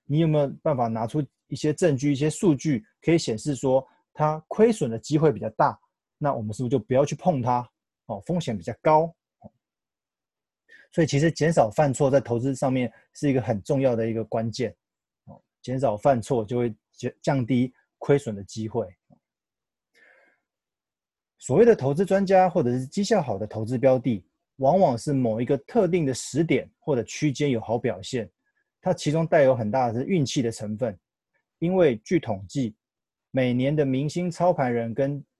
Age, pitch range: 20-39, 120-155 Hz